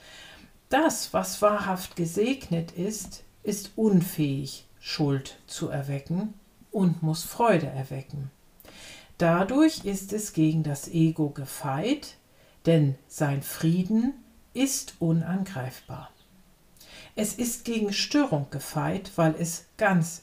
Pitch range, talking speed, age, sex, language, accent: 155-200 Hz, 100 wpm, 50-69, female, German, German